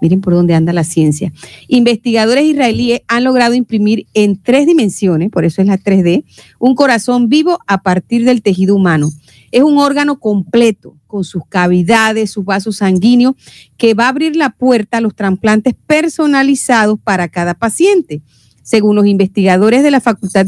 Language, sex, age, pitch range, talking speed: Spanish, female, 40-59, 195-255 Hz, 165 wpm